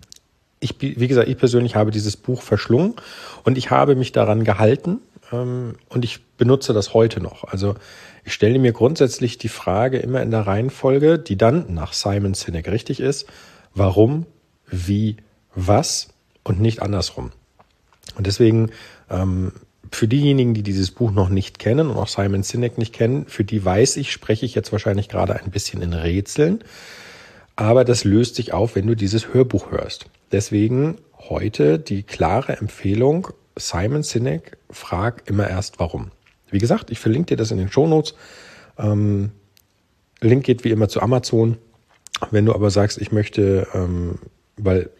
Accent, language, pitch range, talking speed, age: German, German, 95-125 Hz, 160 wpm, 40-59